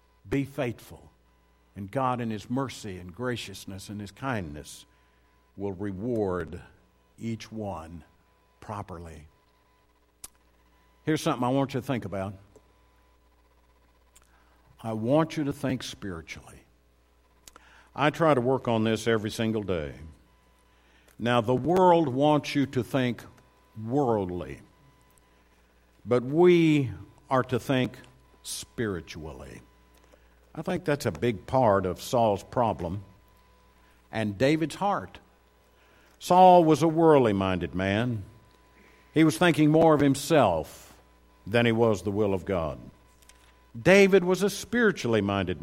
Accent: American